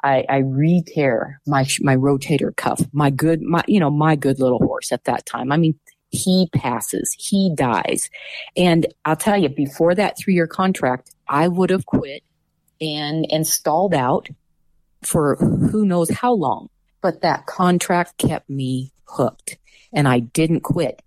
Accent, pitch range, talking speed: American, 130-160 Hz, 160 wpm